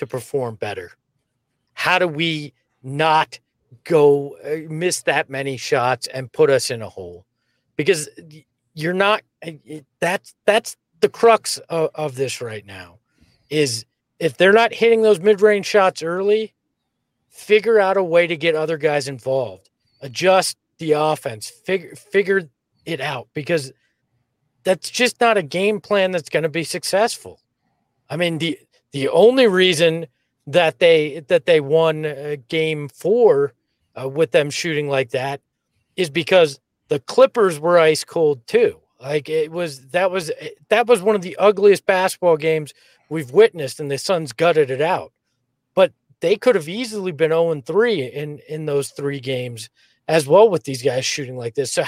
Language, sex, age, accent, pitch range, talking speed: English, male, 40-59, American, 140-195 Hz, 155 wpm